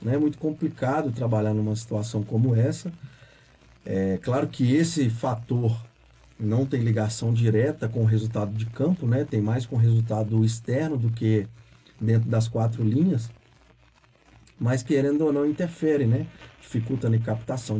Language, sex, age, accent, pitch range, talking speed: Portuguese, male, 40-59, Brazilian, 110-145 Hz, 150 wpm